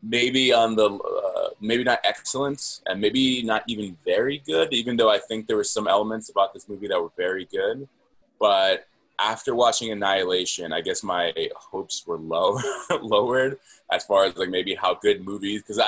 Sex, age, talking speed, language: male, 20-39, 180 wpm, English